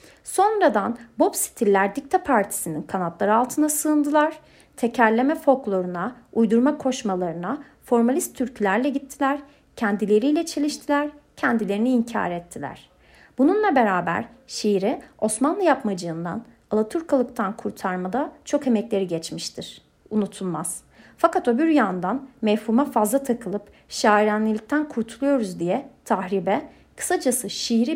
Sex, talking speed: female, 90 wpm